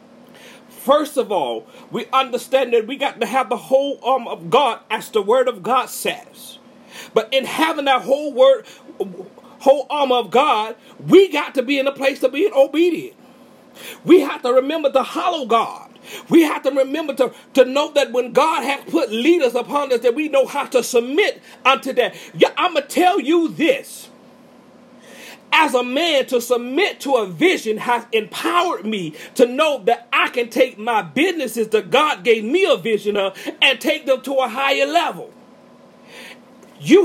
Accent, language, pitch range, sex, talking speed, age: American, English, 250-315 Hz, male, 180 wpm, 40-59